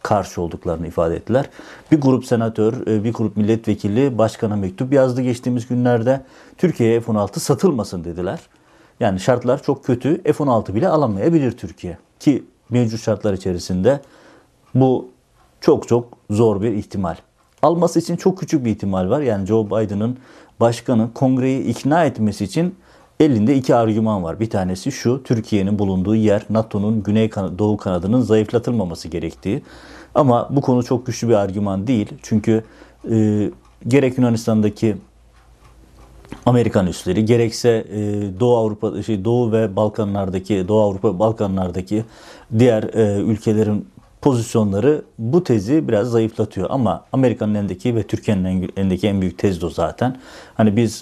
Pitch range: 100-125 Hz